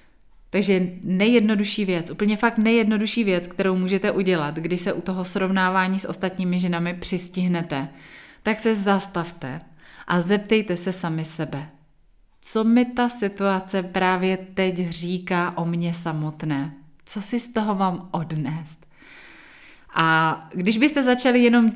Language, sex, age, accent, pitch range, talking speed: Czech, female, 30-49, native, 175-205 Hz, 130 wpm